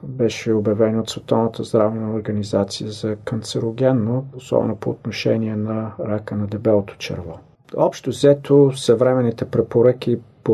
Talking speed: 120 wpm